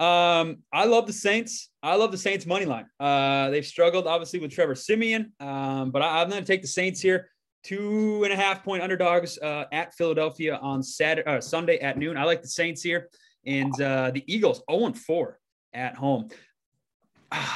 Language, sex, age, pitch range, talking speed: English, male, 20-39, 140-180 Hz, 195 wpm